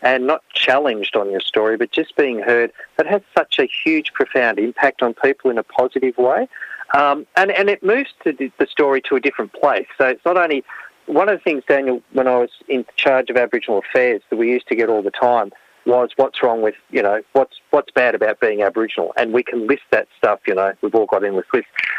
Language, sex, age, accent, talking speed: English, male, 40-59, Australian, 235 wpm